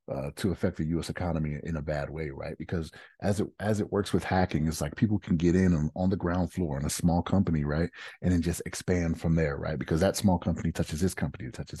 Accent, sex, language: American, male, English